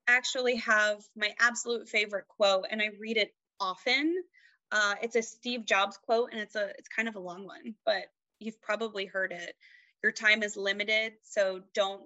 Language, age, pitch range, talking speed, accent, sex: English, 20-39, 185-215 Hz, 185 wpm, American, female